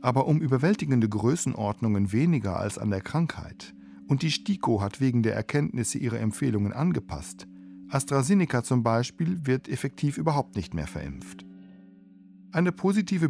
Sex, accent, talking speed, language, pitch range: male, German, 135 wpm, German, 100-140 Hz